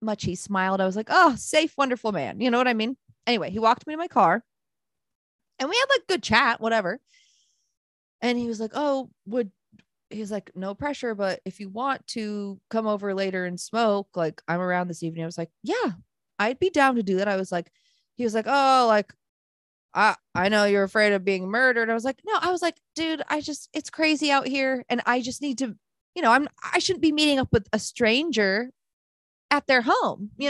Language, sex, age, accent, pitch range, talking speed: English, female, 20-39, American, 195-270 Hz, 225 wpm